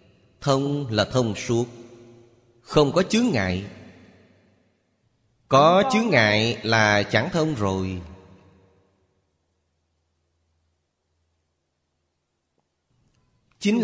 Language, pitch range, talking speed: Vietnamese, 100-125 Hz, 70 wpm